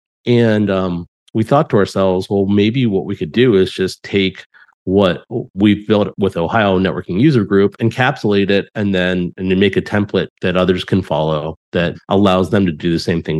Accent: American